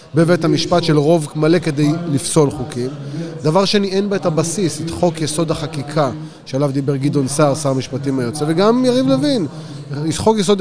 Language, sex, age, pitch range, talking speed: Hebrew, male, 30-49, 140-170 Hz, 180 wpm